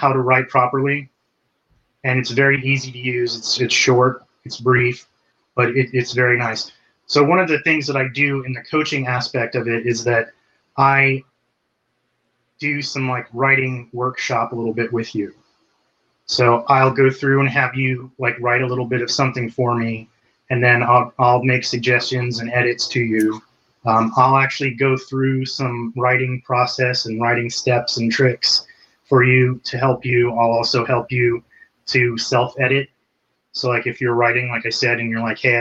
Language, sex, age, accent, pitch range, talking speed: English, male, 30-49, American, 120-135 Hz, 185 wpm